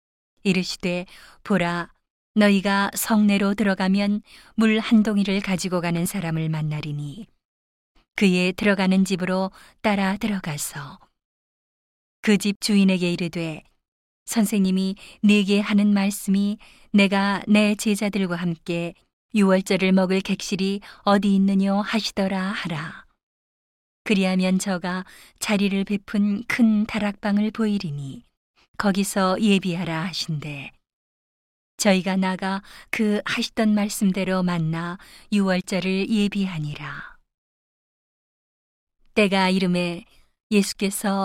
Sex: female